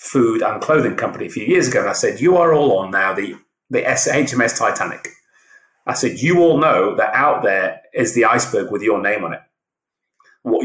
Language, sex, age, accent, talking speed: English, male, 30-49, British, 210 wpm